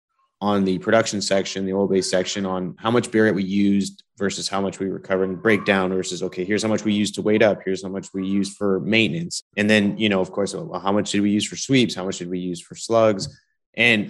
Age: 30-49